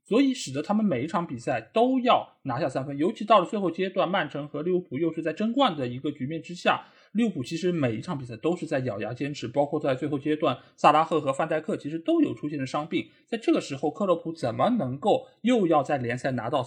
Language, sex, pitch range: Chinese, male, 140-230 Hz